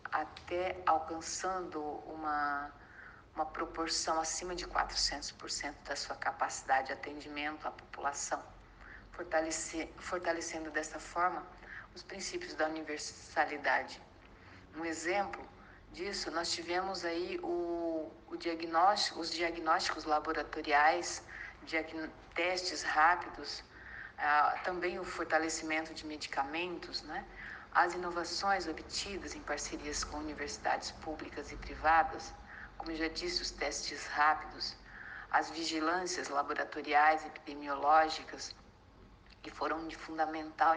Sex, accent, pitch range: female, Brazilian, 150-175 Hz